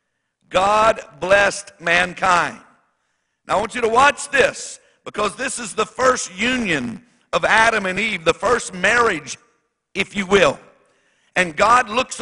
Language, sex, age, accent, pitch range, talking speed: English, male, 60-79, American, 180-240 Hz, 140 wpm